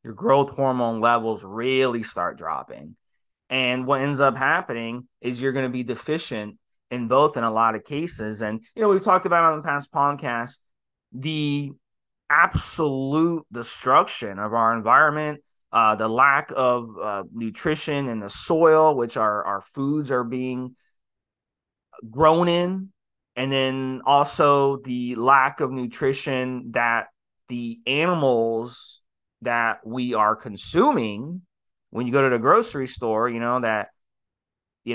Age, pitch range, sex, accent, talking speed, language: 20-39, 115-150 Hz, male, American, 145 wpm, English